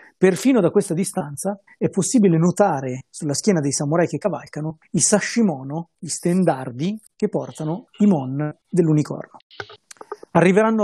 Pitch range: 140-175 Hz